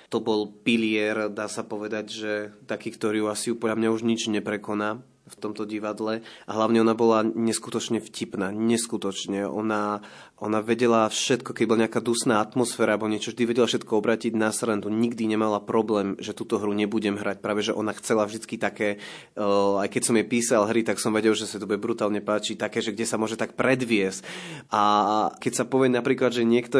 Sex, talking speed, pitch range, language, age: male, 195 wpm, 105-120 Hz, Slovak, 20-39